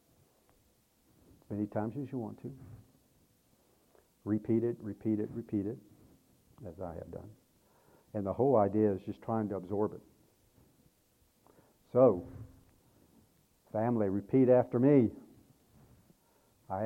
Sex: male